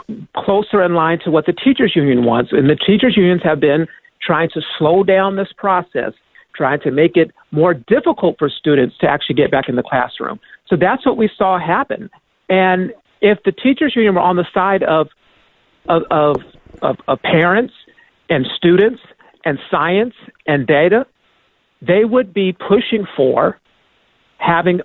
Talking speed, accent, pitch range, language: 165 wpm, American, 160-205 Hz, English